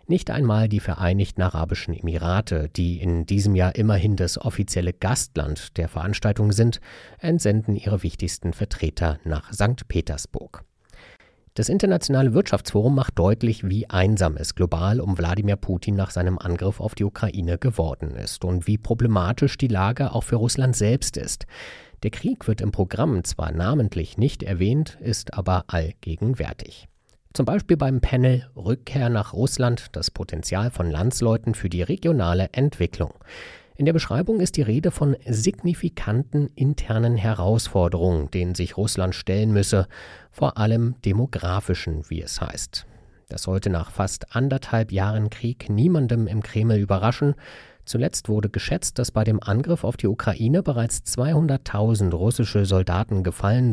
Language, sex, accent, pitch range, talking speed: German, male, German, 90-120 Hz, 145 wpm